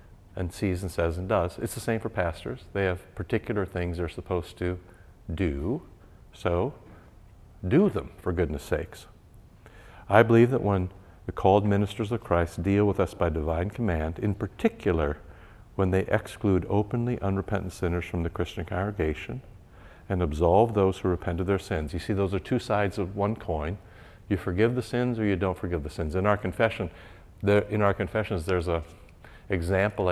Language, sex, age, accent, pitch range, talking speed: English, male, 60-79, American, 90-105 Hz, 170 wpm